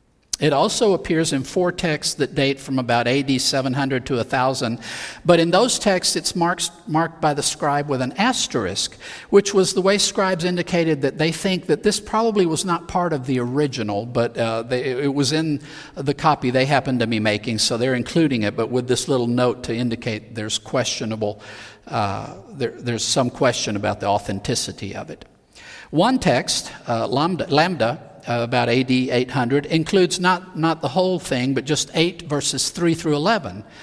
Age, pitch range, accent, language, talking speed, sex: 50-69, 120-170 Hz, American, English, 185 wpm, male